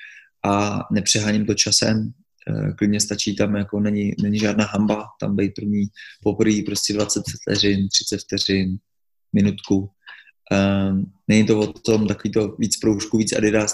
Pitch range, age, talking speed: 105-120 Hz, 20-39, 145 wpm